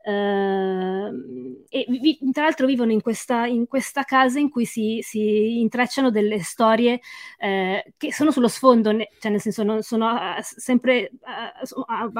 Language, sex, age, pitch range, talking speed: Italian, female, 20-39, 205-235 Hz, 155 wpm